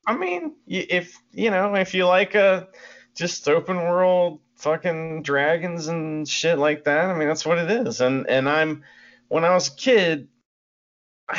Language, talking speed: English, 175 wpm